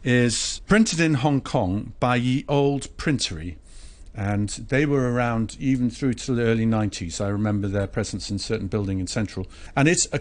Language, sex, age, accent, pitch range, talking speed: English, male, 50-69, British, 105-135 Hz, 180 wpm